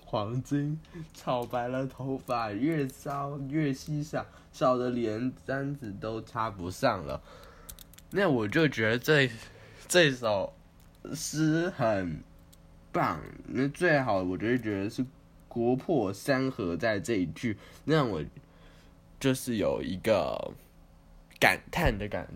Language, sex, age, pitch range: Chinese, male, 10-29, 105-145 Hz